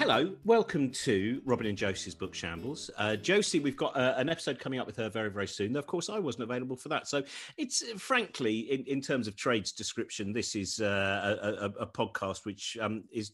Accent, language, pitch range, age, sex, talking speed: British, English, 100-140 Hz, 40-59, male, 215 wpm